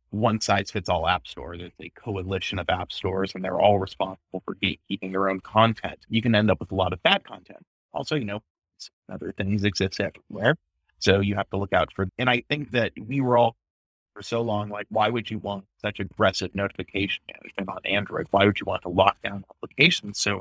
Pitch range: 95-115 Hz